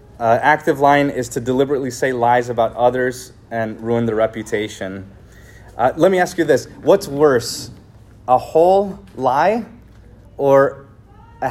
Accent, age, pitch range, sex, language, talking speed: American, 30-49, 105-135 Hz, male, English, 140 wpm